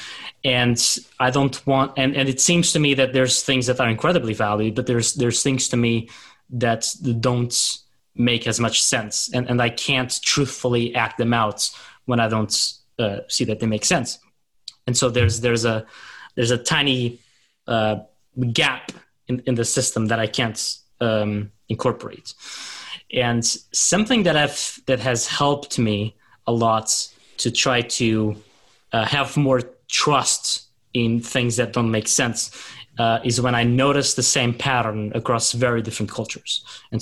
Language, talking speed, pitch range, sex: English, 165 wpm, 110-130 Hz, male